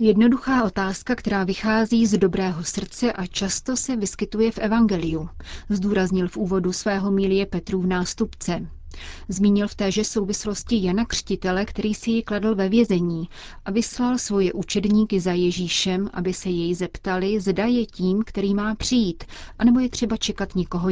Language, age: Czech, 30-49